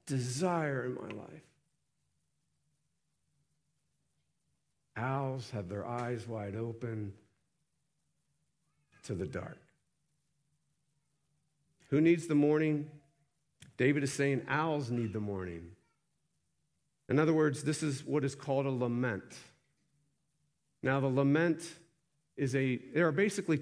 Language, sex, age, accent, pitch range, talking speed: English, male, 50-69, American, 115-150 Hz, 105 wpm